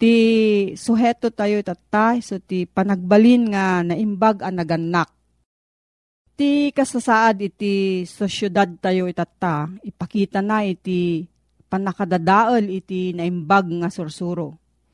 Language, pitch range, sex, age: Filipino, 175-225 Hz, female, 40-59